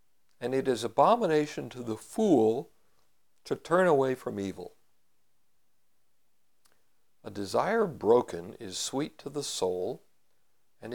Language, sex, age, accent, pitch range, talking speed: English, male, 60-79, American, 115-155 Hz, 115 wpm